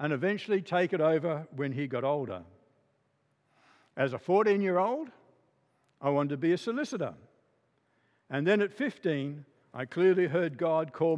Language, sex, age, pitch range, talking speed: English, male, 60-79, 140-205 Hz, 155 wpm